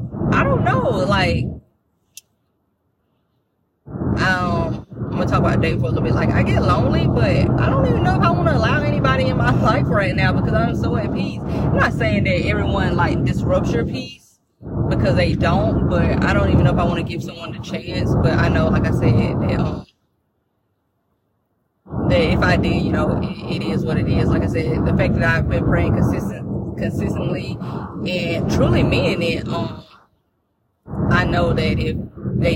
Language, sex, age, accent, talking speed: English, female, 20-39, American, 195 wpm